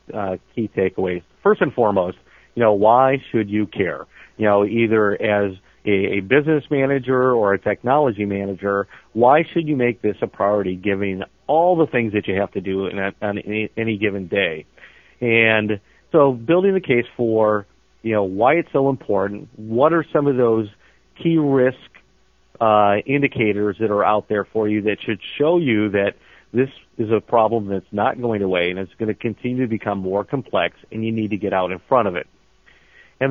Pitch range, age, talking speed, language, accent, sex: 100-135 Hz, 40-59, 195 wpm, English, American, male